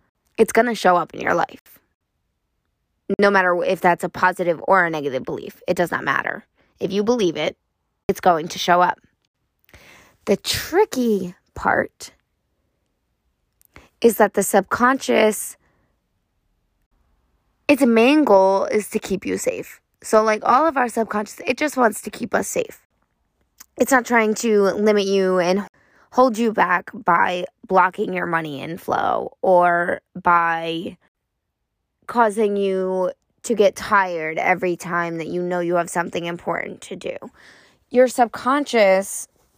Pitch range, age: 175-225 Hz, 20-39